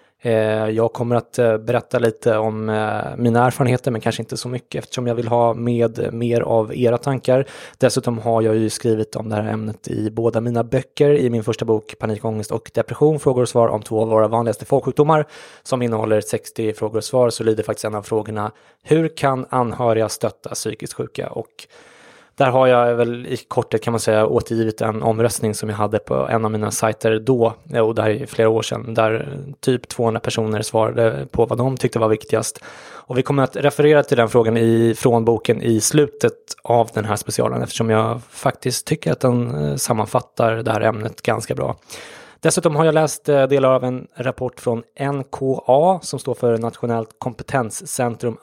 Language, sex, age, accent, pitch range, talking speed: English, male, 20-39, Swedish, 110-130 Hz, 190 wpm